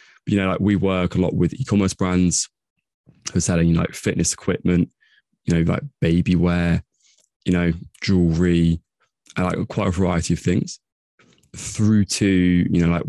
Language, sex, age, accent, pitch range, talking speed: English, male, 20-39, British, 85-95 Hz, 170 wpm